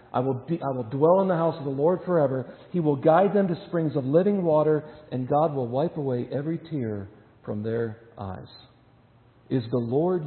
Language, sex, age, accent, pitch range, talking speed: English, male, 50-69, American, 120-150 Hz, 205 wpm